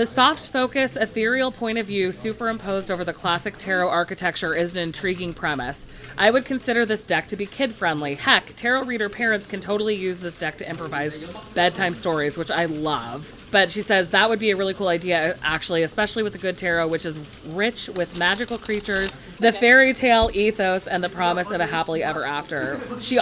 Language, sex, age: English, female, 20-39